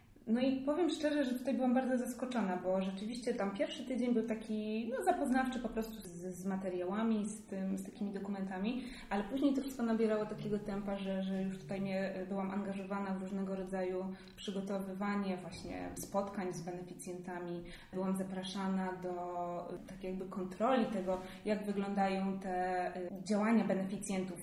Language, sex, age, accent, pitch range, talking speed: Polish, female, 20-39, native, 190-225 Hz, 140 wpm